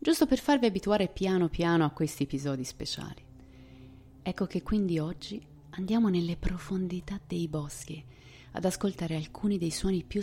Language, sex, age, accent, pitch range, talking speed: Italian, female, 30-49, native, 130-180 Hz, 145 wpm